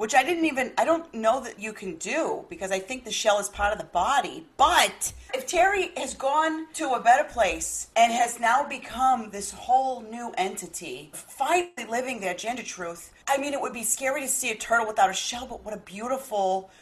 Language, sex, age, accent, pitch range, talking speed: English, female, 40-59, American, 205-275 Hz, 215 wpm